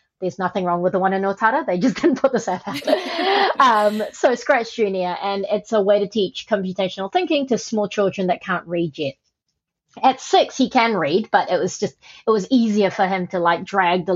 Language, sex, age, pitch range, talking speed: English, female, 30-49, 180-240 Hz, 215 wpm